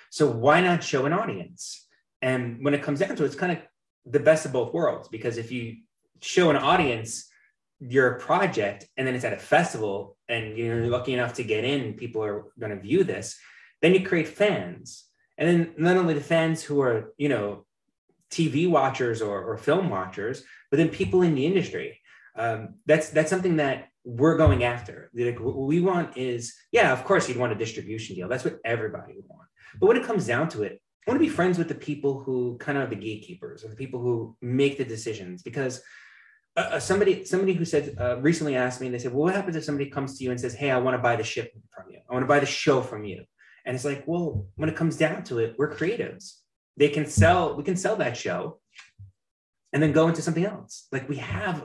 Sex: male